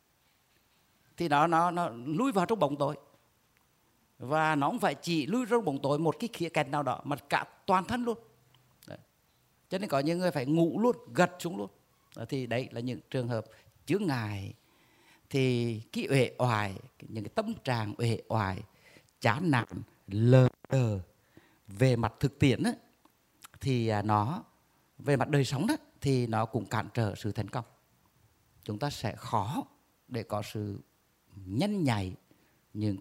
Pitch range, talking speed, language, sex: 110-145 Hz, 170 wpm, Vietnamese, male